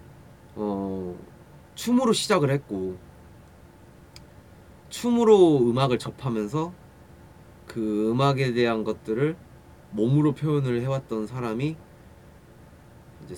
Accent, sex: native, male